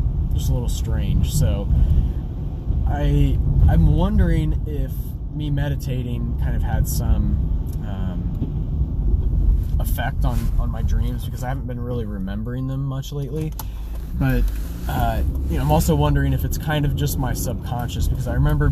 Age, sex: 20-39, male